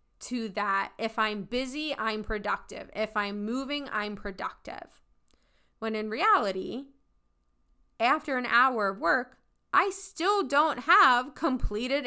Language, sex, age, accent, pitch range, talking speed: English, female, 20-39, American, 205-275 Hz, 125 wpm